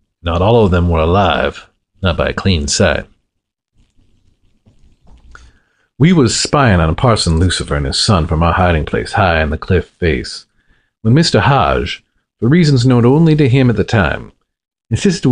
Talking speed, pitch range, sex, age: 170 wpm, 85-120 Hz, male, 50-69